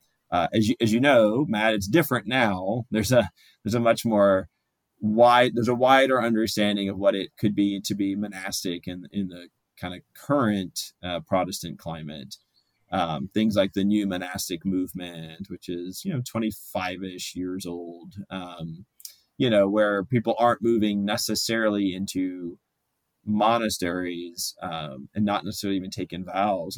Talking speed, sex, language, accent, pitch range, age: 155 wpm, male, English, American, 95-115 Hz, 30-49